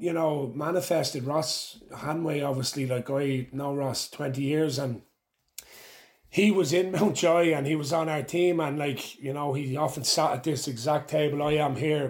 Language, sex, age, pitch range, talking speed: English, male, 30-49, 140-160 Hz, 190 wpm